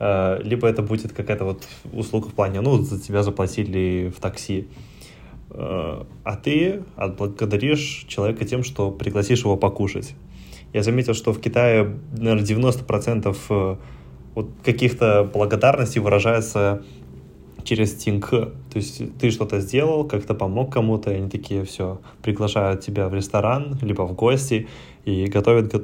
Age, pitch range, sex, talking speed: 20-39, 100-120 Hz, male, 130 wpm